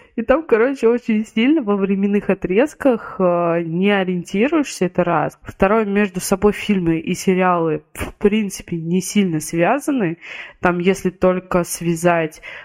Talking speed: 135 wpm